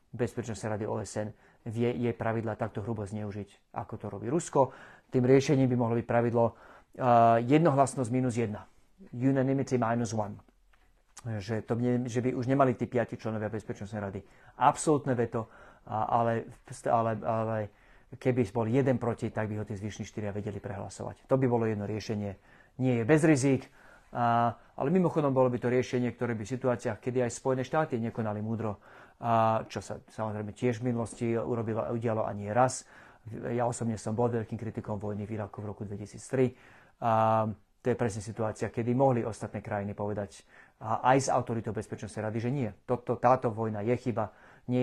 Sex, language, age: male, Slovak, 30-49